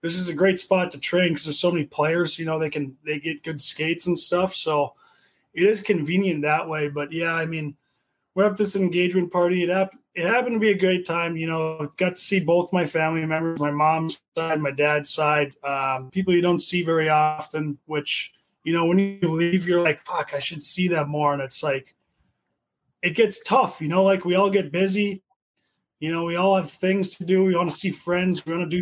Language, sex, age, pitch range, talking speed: English, male, 20-39, 155-185 Hz, 235 wpm